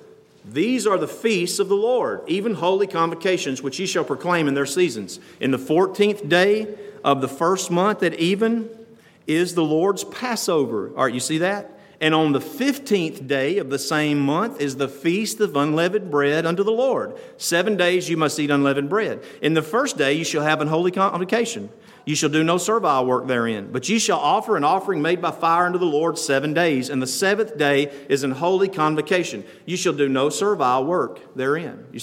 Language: English